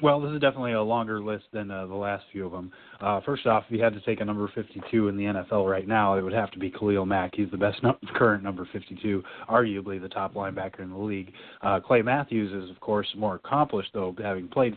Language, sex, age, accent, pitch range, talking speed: English, male, 30-49, American, 100-115 Hz, 250 wpm